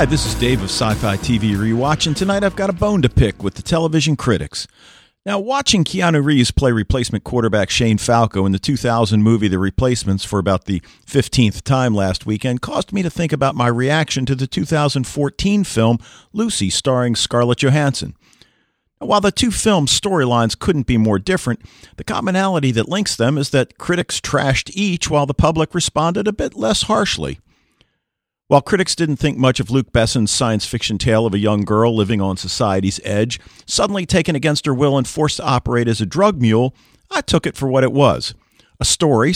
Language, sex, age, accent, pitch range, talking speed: English, male, 50-69, American, 110-150 Hz, 190 wpm